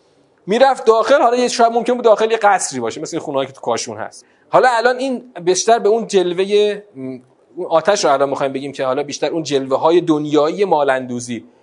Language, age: Persian, 30-49